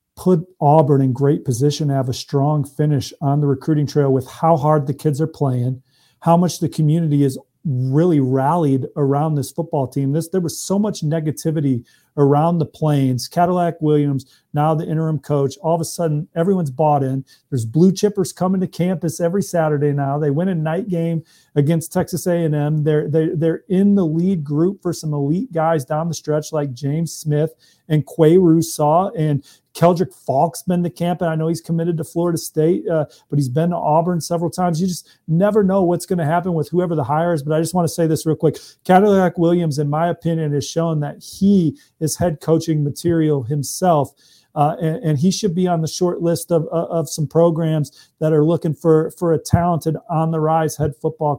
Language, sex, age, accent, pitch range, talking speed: English, male, 40-59, American, 145-170 Hz, 205 wpm